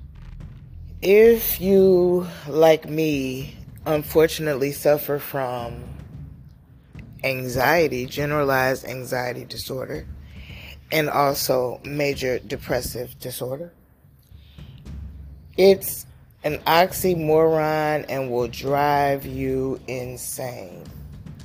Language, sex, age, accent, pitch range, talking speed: English, female, 20-39, American, 125-150 Hz, 65 wpm